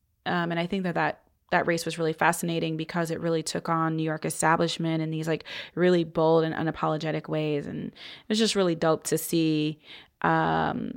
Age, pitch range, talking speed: 20-39, 160-175 Hz, 195 wpm